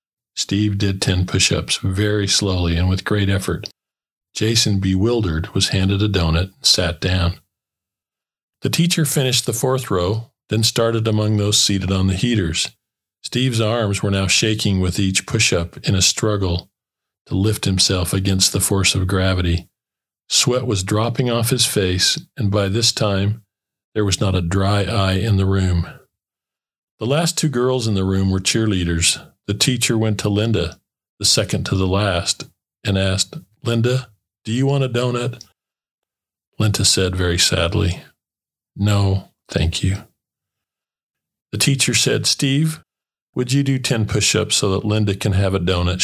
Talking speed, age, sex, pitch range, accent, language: 160 wpm, 40-59, male, 95-115 Hz, American, English